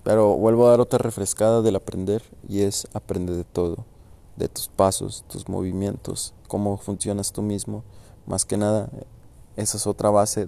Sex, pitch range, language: male, 95-110 Hz, Spanish